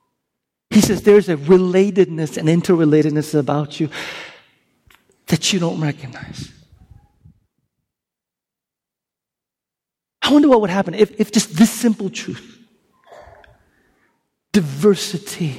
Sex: male